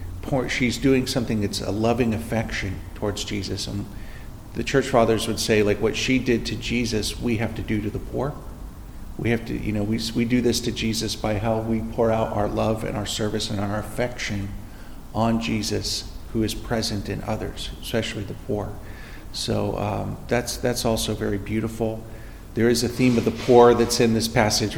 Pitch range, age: 100-115 Hz, 50-69